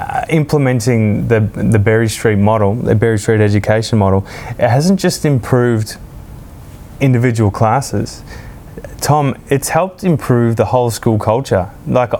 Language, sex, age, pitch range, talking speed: English, male, 20-39, 105-120 Hz, 135 wpm